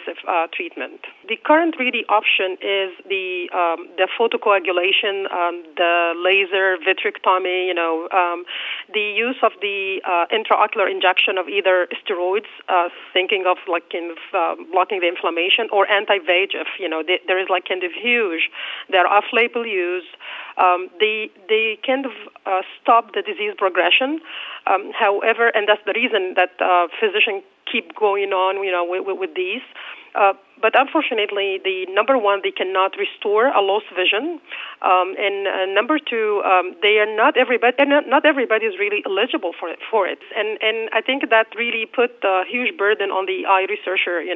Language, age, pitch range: English, 40-59, 185-255 Hz